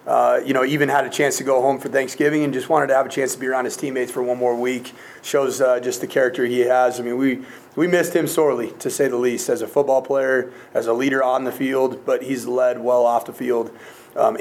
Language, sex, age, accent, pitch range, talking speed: English, male, 30-49, American, 125-145 Hz, 265 wpm